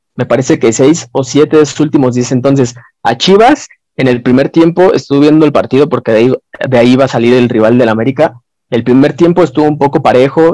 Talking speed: 230 wpm